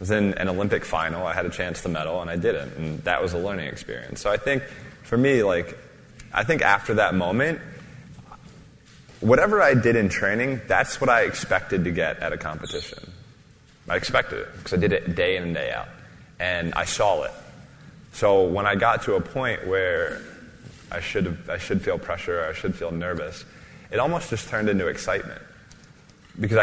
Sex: male